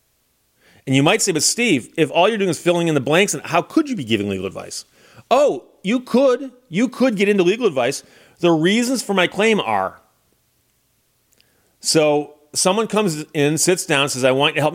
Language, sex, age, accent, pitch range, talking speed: English, male, 40-59, American, 130-180 Hz, 205 wpm